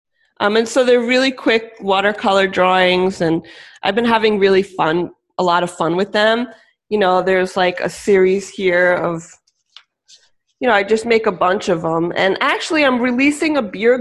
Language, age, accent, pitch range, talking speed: English, 20-39, American, 175-215 Hz, 185 wpm